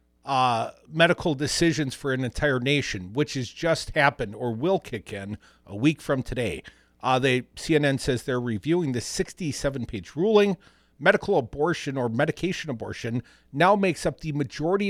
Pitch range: 110-165 Hz